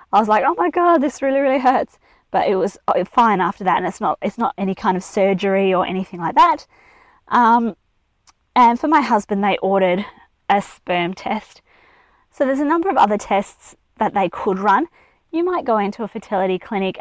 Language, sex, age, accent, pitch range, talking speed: English, female, 20-39, Australian, 195-270 Hz, 200 wpm